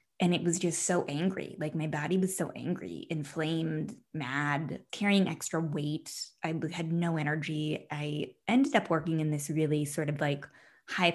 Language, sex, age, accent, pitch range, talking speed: English, female, 20-39, American, 150-175 Hz, 170 wpm